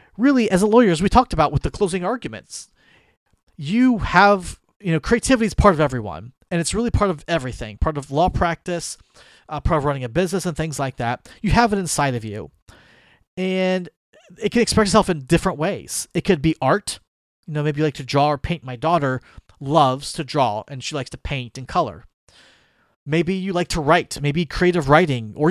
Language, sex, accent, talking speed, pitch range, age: English, male, American, 210 wpm, 130-175 Hz, 30-49